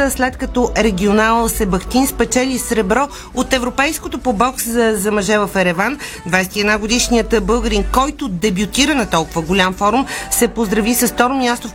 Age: 40-59